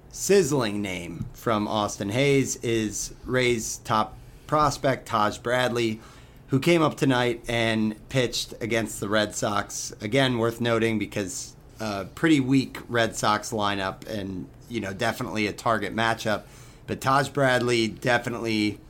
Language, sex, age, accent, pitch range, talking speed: English, male, 40-59, American, 110-130 Hz, 135 wpm